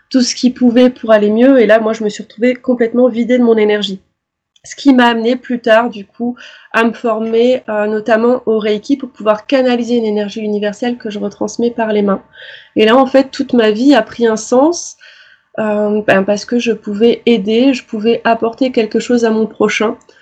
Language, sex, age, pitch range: French, female, 20-39, 215-250 Hz